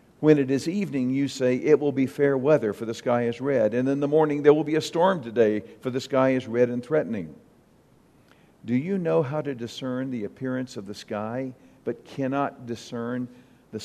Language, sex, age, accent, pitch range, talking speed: English, male, 50-69, American, 110-140 Hz, 210 wpm